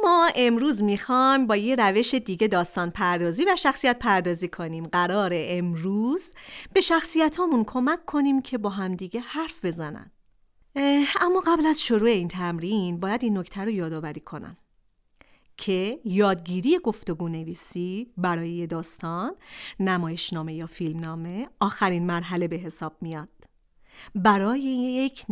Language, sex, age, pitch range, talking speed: Persian, female, 40-59, 175-265 Hz, 135 wpm